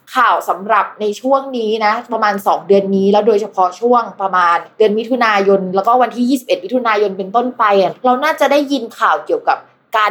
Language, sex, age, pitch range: Thai, female, 20-39, 195-250 Hz